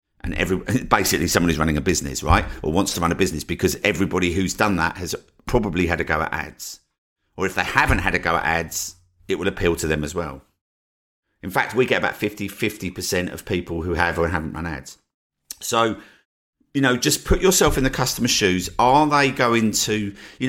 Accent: British